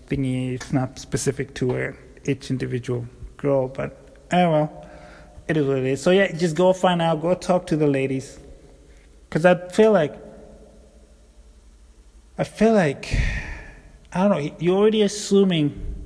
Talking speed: 150 wpm